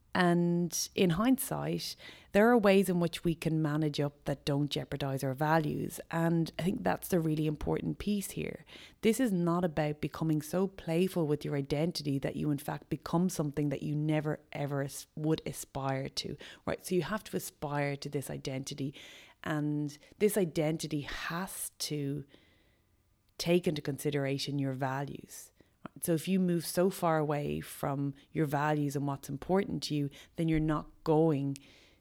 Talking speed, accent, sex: 165 wpm, Irish, female